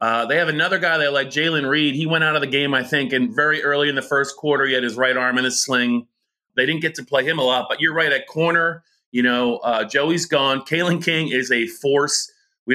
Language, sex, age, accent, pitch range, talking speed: English, male, 30-49, American, 125-160 Hz, 265 wpm